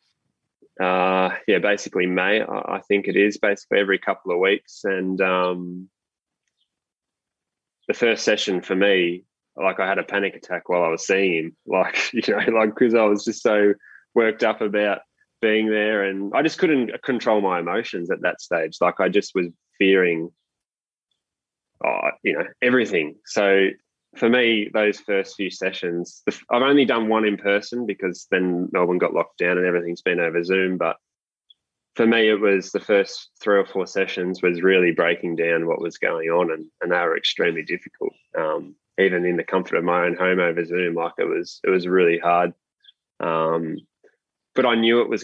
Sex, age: male, 20-39